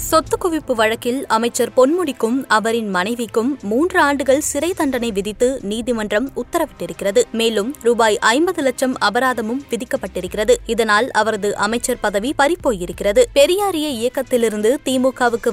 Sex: female